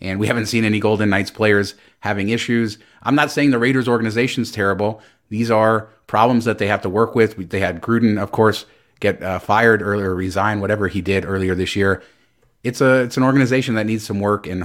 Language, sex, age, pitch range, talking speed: English, male, 30-49, 95-115 Hz, 215 wpm